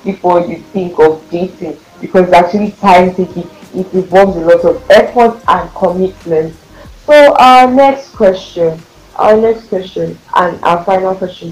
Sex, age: female, 20-39